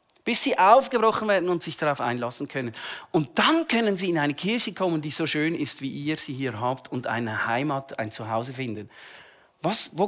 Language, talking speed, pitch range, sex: German, 195 wpm, 145-215 Hz, male